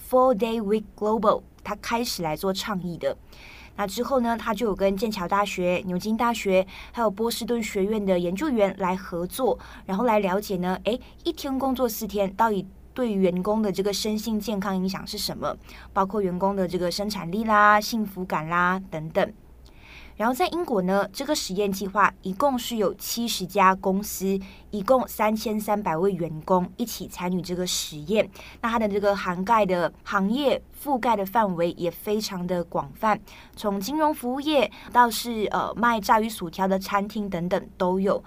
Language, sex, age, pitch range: Chinese, female, 20-39, 185-230 Hz